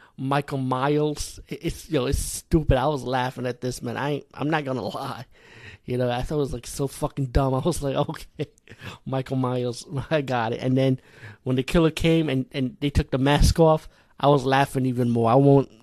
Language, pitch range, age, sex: English, 125-140 Hz, 30-49, male